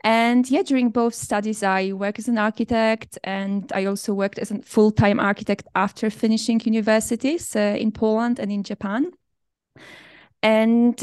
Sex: female